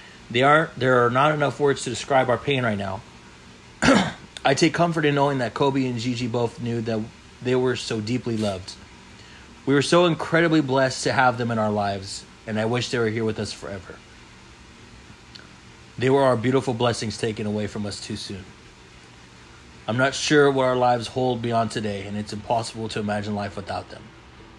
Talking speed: 185 wpm